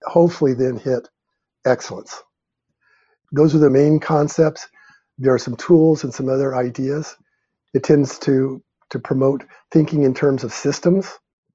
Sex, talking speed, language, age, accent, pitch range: male, 140 wpm, English, 50-69, American, 120-150 Hz